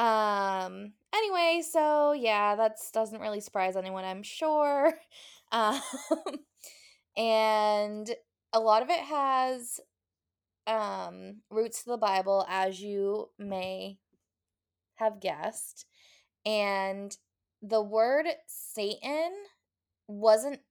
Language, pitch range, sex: English, 195-245 Hz, female